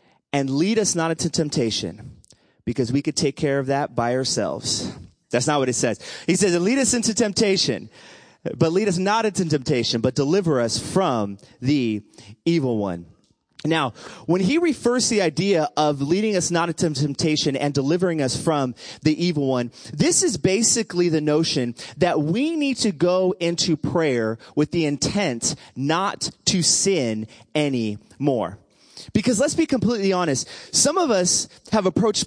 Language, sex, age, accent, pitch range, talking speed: English, male, 30-49, American, 145-195 Hz, 165 wpm